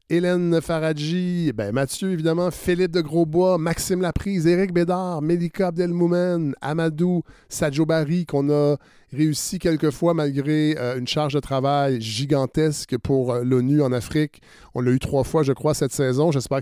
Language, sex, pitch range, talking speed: French, male, 130-175 Hz, 150 wpm